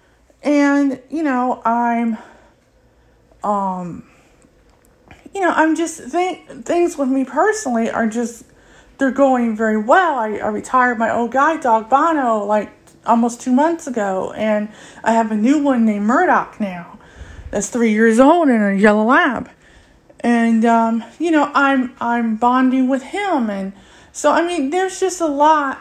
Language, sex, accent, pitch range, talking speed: English, female, American, 220-285 Hz, 155 wpm